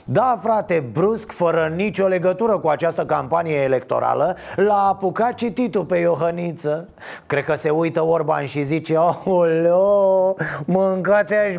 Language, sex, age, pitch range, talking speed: Romanian, male, 30-49, 145-180 Hz, 125 wpm